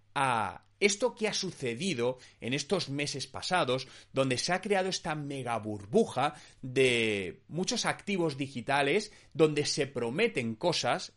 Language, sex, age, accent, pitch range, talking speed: Spanish, male, 30-49, Spanish, 110-180 Hz, 130 wpm